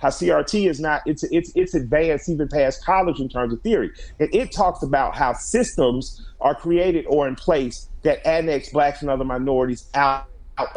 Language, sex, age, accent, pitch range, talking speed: English, male, 40-59, American, 130-175 Hz, 190 wpm